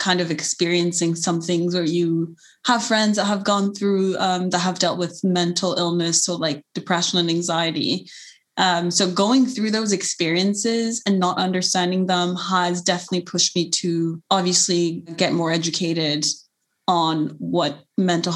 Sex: female